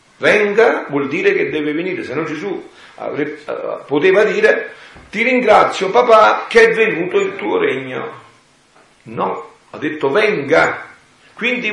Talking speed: 130 wpm